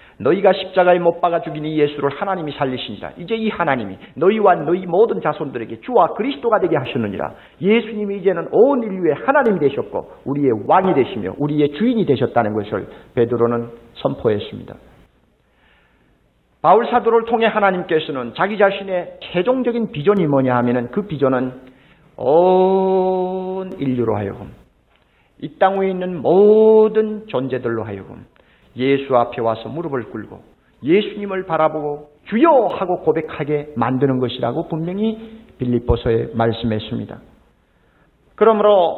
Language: Korean